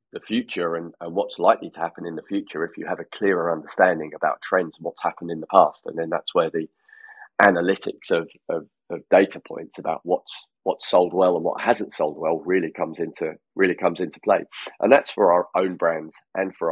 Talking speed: 220 wpm